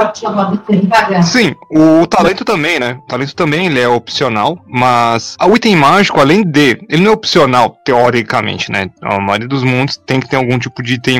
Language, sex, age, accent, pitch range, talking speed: Portuguese, male, 20-39, Brazilian, 125-165 Hz, 180 wpm